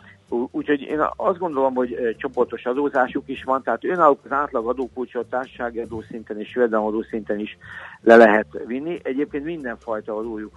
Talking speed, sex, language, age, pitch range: 135 wpm, male, Hungarian, 50-69, 110-125 Hz